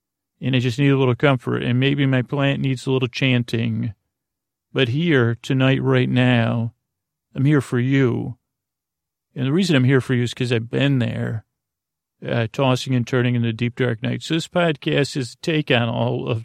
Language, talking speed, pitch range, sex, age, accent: English, 195 wpm, 120-140 Hz, male, 40-59, American